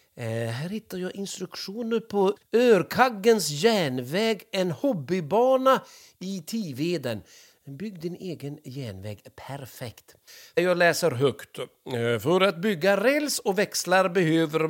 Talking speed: 110 wpm